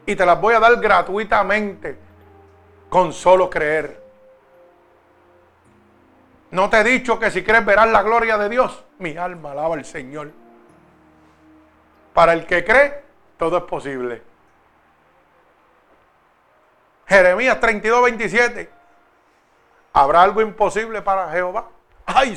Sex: male